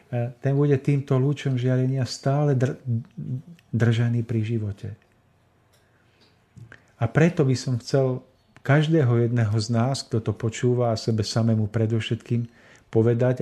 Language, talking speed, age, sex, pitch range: Slovak, 115 wpm, 50-69, male, 115-135 Hz